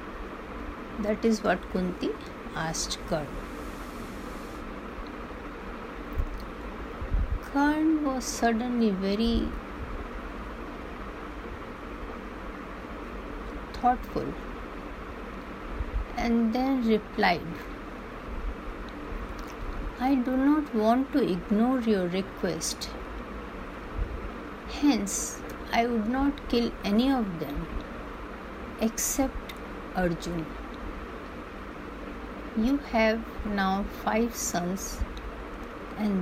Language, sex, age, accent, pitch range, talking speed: Hindi, female, 60-79, native, 205-255 Hz, 65 wpm